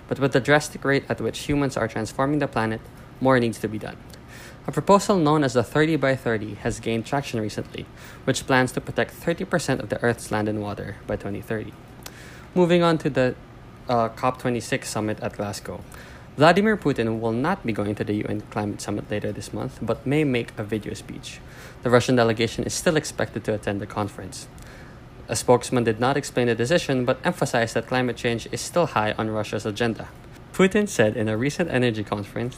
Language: English